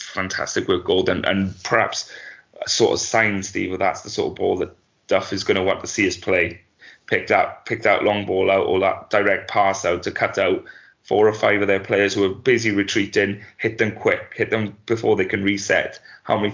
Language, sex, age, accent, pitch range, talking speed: English, male, 20-39, British, 95-110 Hz, 225 wpm